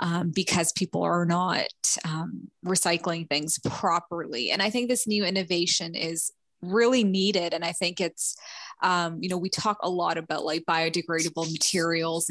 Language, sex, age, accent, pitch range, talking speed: English, female, 20-39, American, 170-200 Hz, 160 wpm